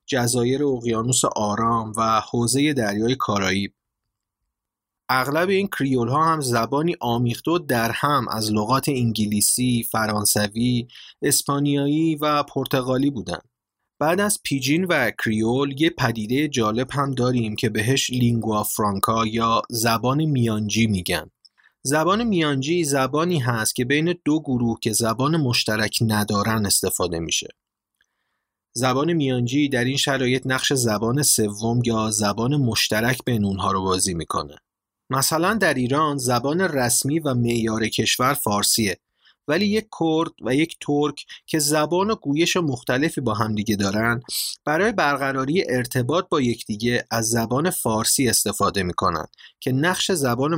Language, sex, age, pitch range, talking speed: Persian, male, 30-49, 110-145 Hz, 130 wpm